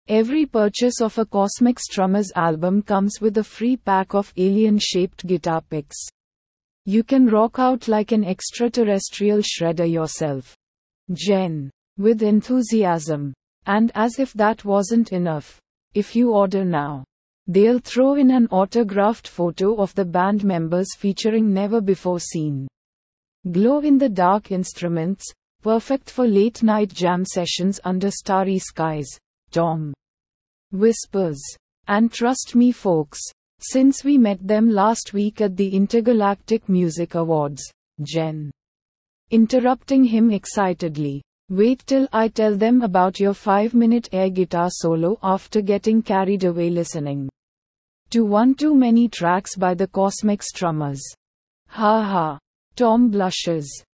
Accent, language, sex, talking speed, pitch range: Indian, English, female, 125 wpm, 175-225 Hz